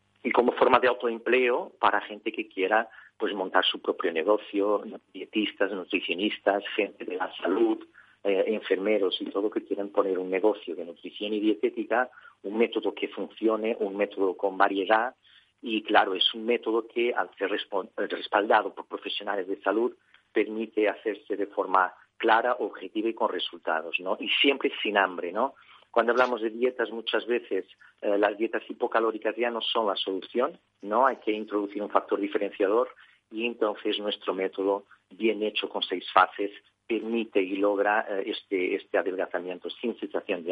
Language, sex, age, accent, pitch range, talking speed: Spanish, male, 40-59, Spanish, 100-120 Hz, 165 wpm